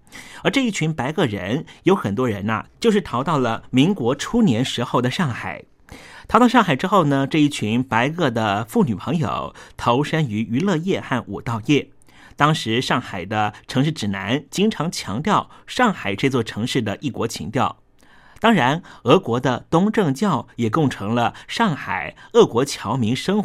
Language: Chinese